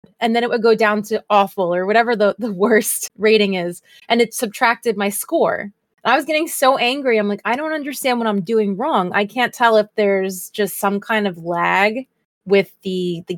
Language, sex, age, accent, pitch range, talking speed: English, female, 20-39, American, 190-235 Hz, 210 wpm